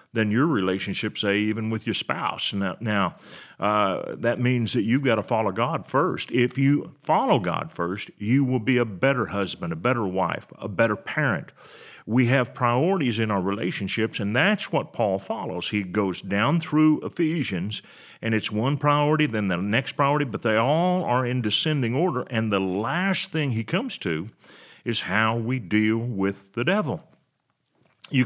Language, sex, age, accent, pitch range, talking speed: English, male, 40-59, American, 105-135 Hz, 175 wpm